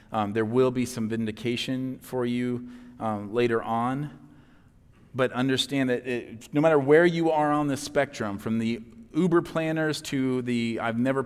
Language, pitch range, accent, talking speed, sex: English, 120-145 Hz, American, 165 wpm, male